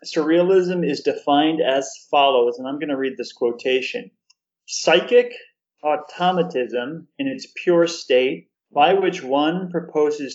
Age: 40-59